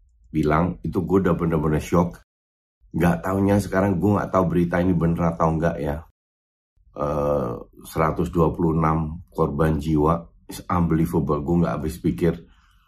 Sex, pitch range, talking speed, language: male, 75-85 Hz, 125 wpm, Indonesian